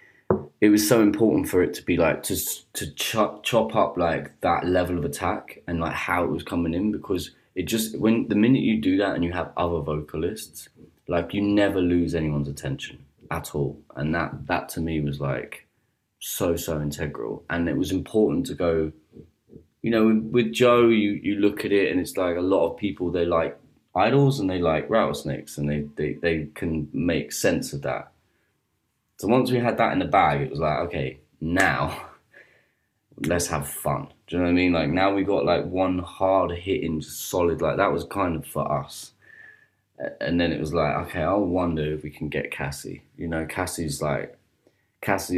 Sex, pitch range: male, 75-100 Hz